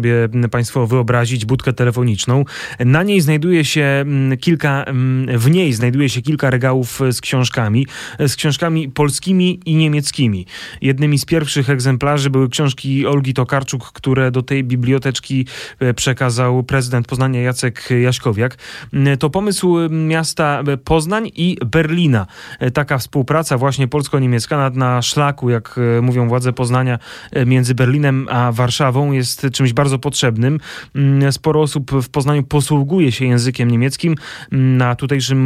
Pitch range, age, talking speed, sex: 125-150 Hz, 30-49, 125 wpm, male